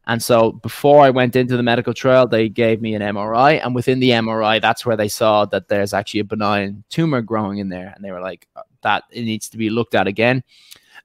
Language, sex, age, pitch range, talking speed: English, male, 20-39, 110-135 Hz, 235 wpm